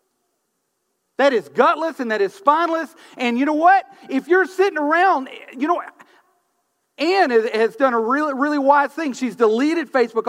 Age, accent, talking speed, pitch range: 40-59, American, 165 wpm, 265-370 Hz